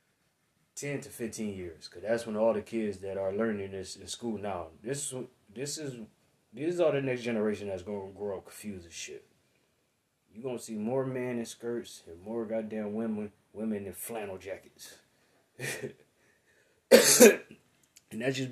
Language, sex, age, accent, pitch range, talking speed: English, male, 20-39, American, 95-120 Hz, 165 wpm